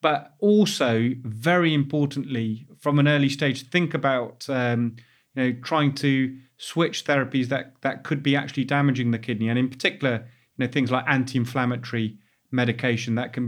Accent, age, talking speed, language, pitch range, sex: British, 30-49, 160 wpm, English, 120-140 Hz, male